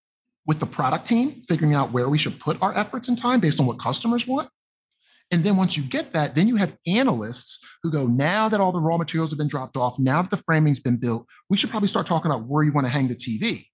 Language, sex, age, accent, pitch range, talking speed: English, male, 30-49, American, 125-185 Hz, 260 wpm